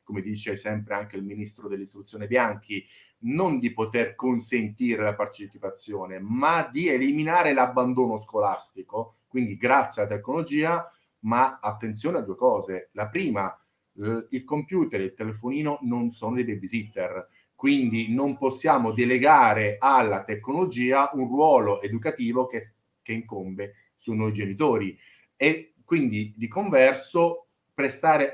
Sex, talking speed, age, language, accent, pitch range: male, 125 wpm, 30-49, Italian, native, 105-140 Hz